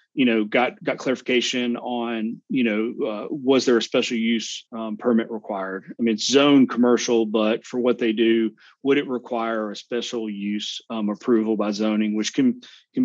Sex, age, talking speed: male, 30-49, 185 wpm